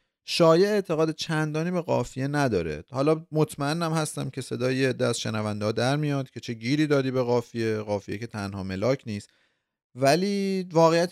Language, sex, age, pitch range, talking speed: Persian, male, 30-49, 110-155 Hz, 150 wpm